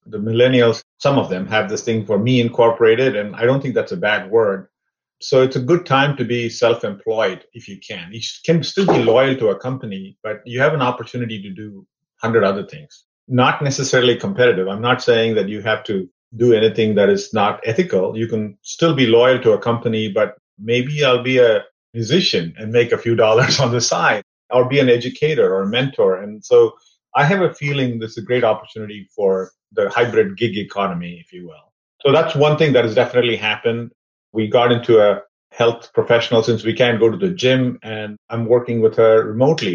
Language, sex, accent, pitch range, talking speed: English, male, Indian, 110-140 Hz, 210 wpm